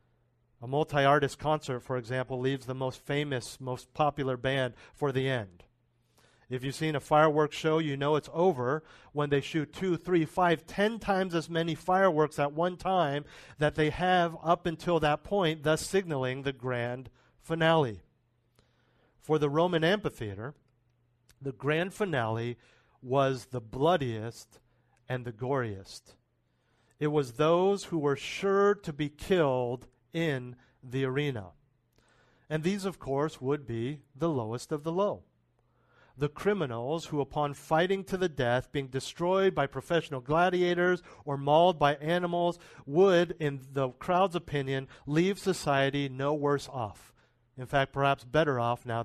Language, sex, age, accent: English, male, 50-69, American